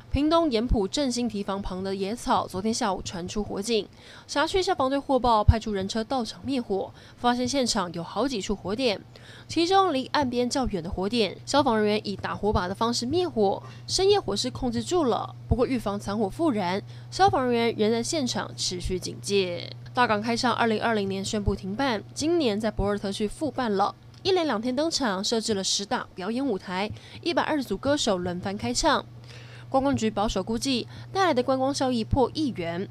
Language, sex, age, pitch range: Chinese, female, 20-39, 190-260 Hz